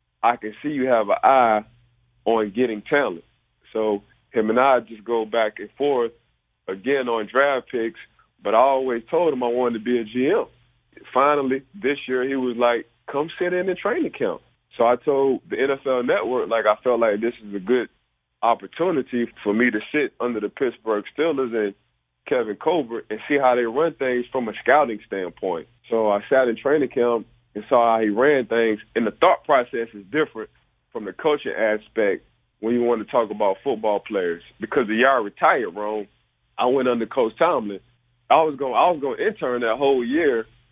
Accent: American